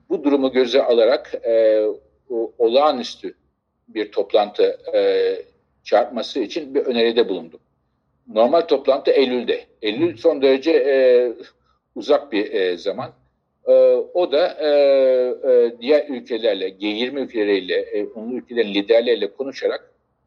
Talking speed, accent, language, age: 90 wpm, native, Turkish, 50-69